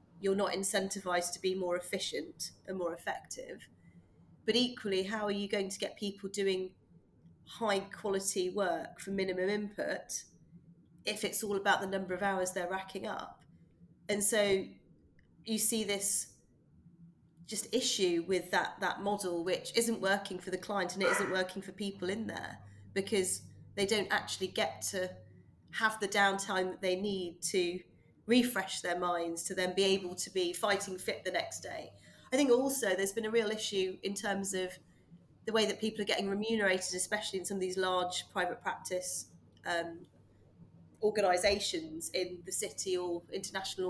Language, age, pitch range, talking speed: English, 30-49, 180-210 Hz, 165 wpm